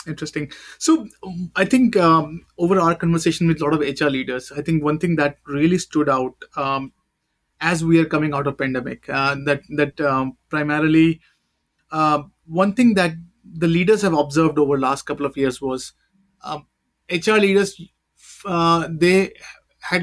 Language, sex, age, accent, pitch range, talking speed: English, male, 30-49, Indian, 145-170 Hz, 170 wpm